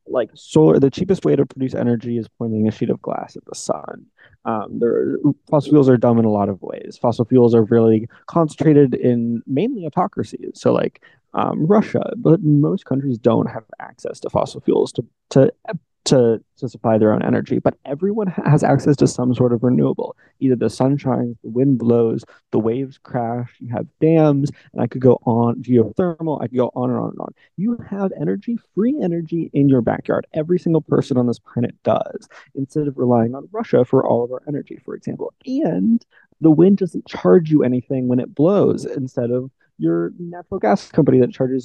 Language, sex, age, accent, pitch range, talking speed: English, male, 20-39, American, 120-160 Hz, 200 wpm